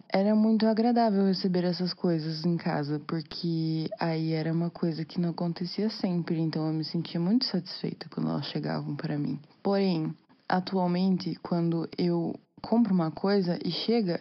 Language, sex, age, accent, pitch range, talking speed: Portuguese, female, 20-39, Brazilian, 165-205 Hz, 155 wpm